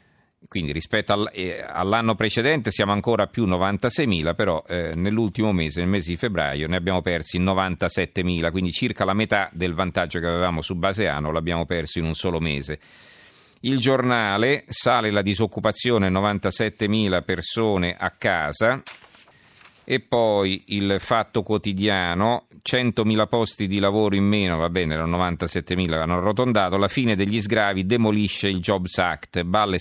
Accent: native